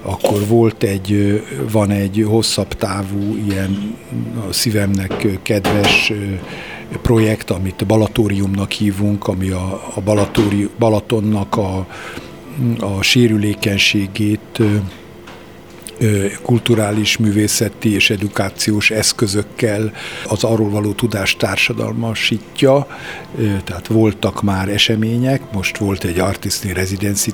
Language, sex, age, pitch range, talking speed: Hungarian, male, 50-69, 100-110 Hz, 90 wpm